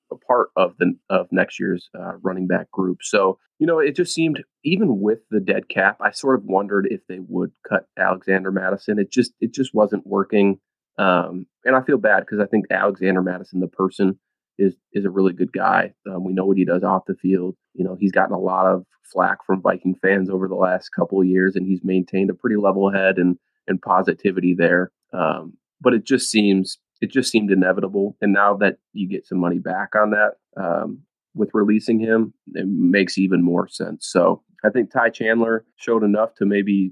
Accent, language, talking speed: American, English, 210 wpm